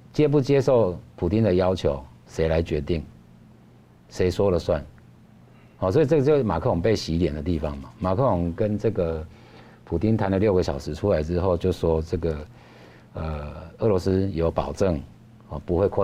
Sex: male